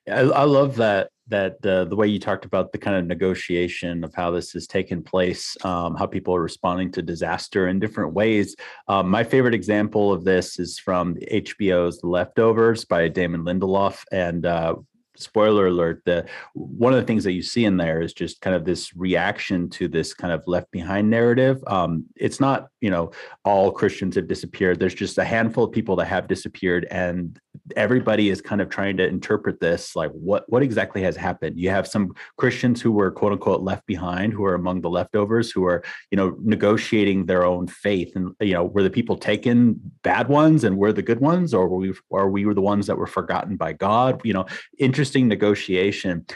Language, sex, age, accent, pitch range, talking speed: English, male, 30-49, American, 90-105 Hz, 205 wpm